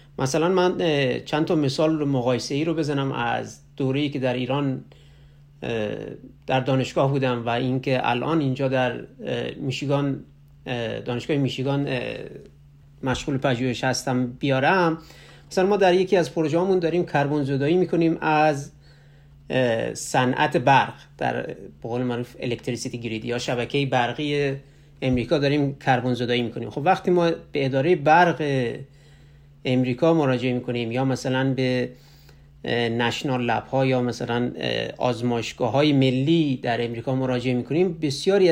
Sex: male